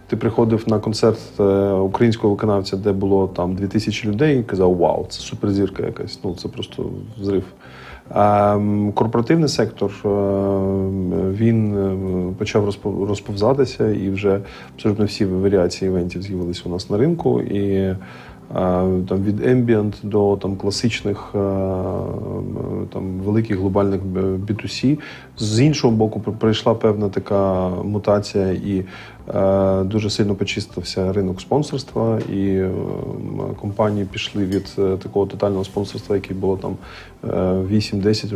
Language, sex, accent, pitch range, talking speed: Ukrainian, male, native, 95-110 Hz, 115 wpm